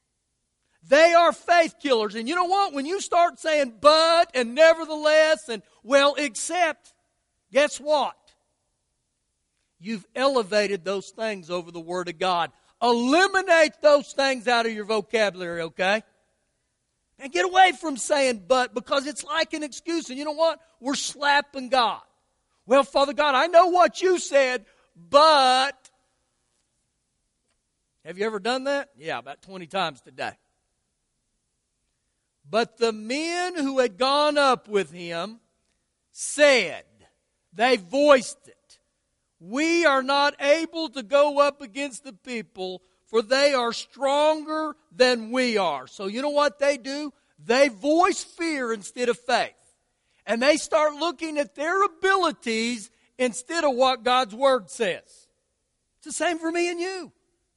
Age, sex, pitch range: 50-69, male, 230-310 Hz